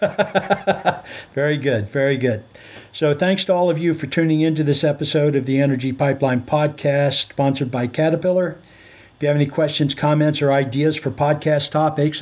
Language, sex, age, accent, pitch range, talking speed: English, male, 60-79, American, 130-150 Hz, 165 wpm